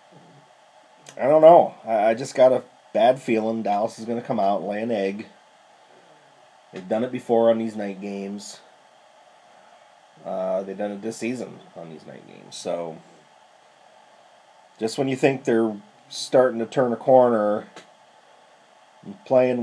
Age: 30-49